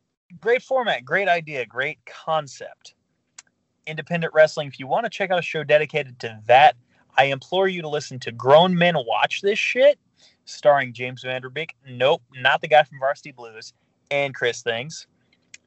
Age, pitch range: 30-49, 135-185 Hz